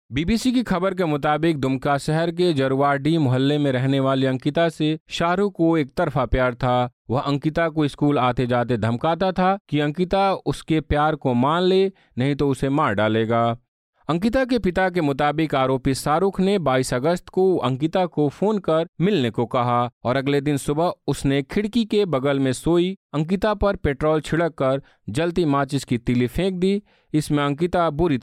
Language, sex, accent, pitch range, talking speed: Hindi, male, native, 130-175 Hz, 175 wpm